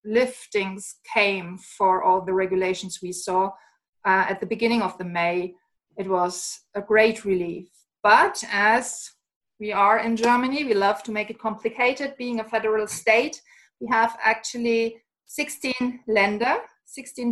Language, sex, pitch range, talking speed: English, female, 200-240 Hz, 145 wpm